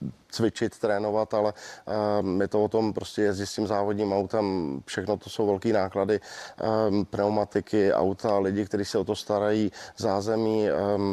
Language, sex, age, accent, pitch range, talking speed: Czech, male, 20-39, native, 100-110 Hz, 160 wpm